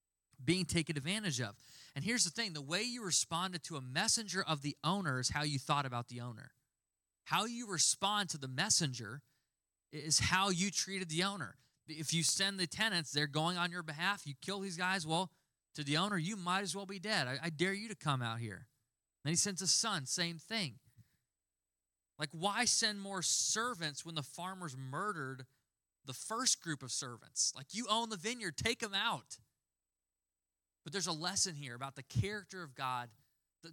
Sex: male